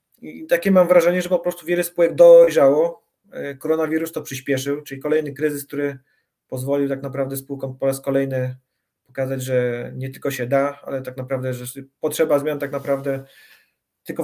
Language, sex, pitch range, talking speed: Polish, male, 135-170 Hz, 165 wpm